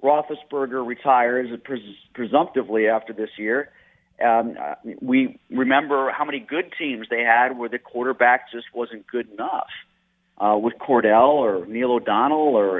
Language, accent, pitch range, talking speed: English, American, 120-145 Hz, 135 wpm